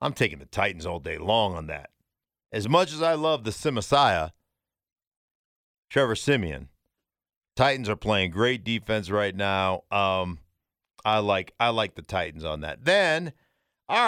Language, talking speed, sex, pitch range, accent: English, 155 wpm, male, 100-140 Hz, American